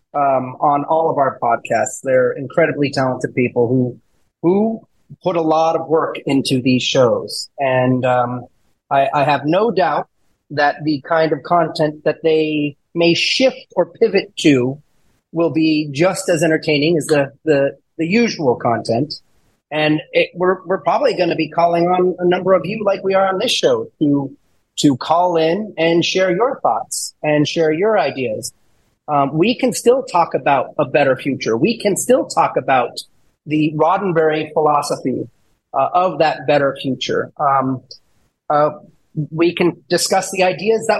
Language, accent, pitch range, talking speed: English, American, 150-195 Hz, 165 wpm